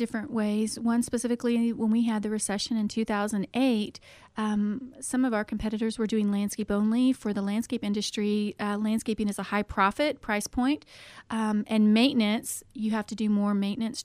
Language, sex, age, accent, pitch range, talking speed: English, female, 30-49, American, 205-235 Hz, 175 wpm